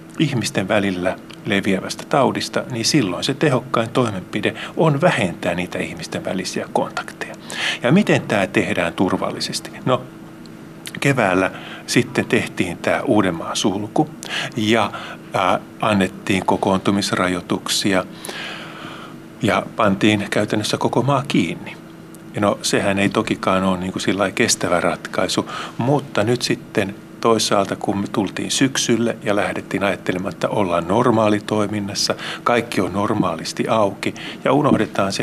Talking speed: 115 wpm